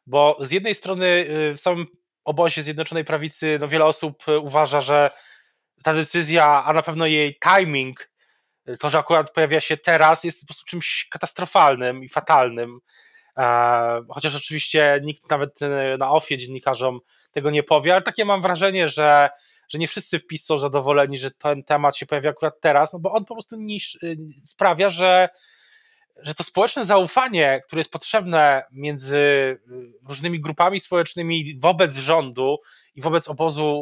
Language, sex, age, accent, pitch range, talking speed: Polish, male, 20-39, native, 145-180 Hz, 155 wpm